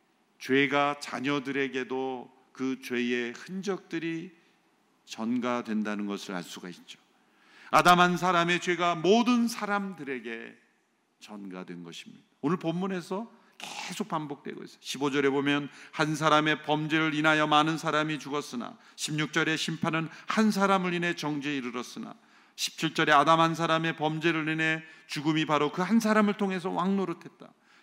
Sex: male